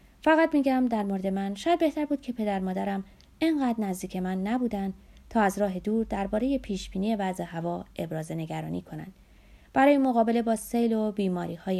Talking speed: 165 wpm